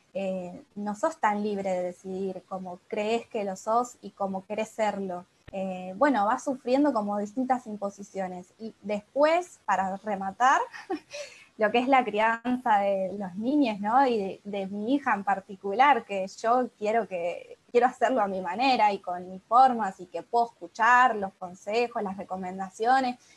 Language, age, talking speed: Spanish, 20-39, 165 wpm